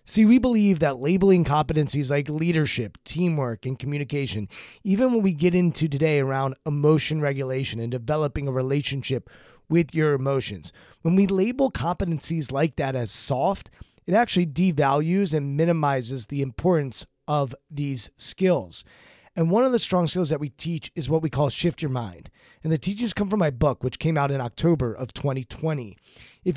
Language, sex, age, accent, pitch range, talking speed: English, male, 30-49, American, 135-175 Hz, 170 wpm